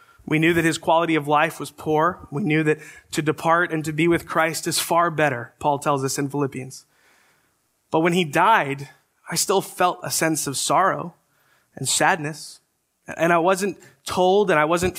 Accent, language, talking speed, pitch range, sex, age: American, English, 190 wpm, 150-180 Hz, male, 20-39